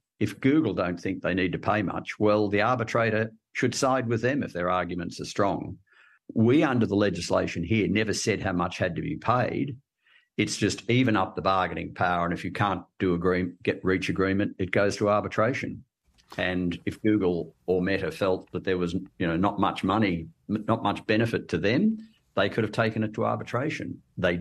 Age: 50-69